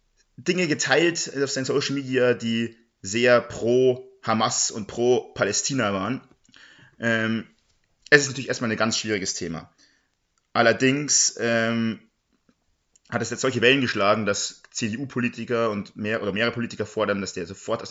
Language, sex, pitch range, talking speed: German, male, 105-130 Hz, 145 wpm